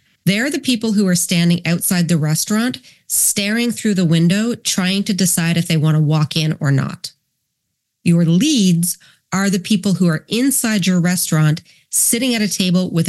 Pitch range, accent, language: 160-200 Hz, American, English